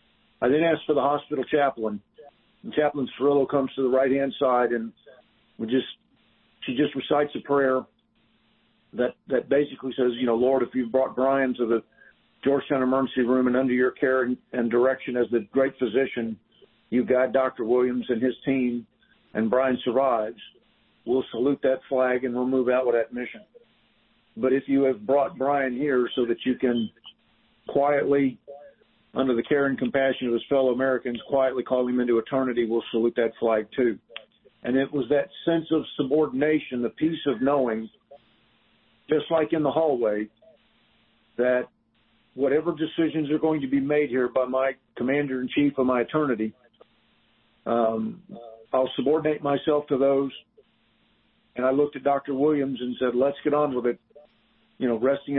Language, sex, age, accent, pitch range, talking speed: English, male, 50-69, American, 125-140 Hz, 170 wpm